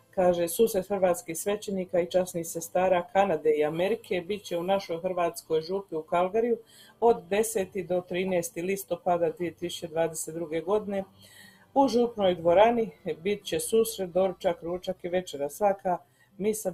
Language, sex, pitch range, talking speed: Croatian, female, 160-190 Hz, 135 wpm